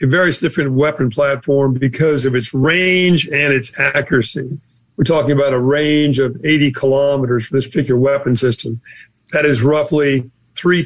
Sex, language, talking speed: male, English, 160 wpm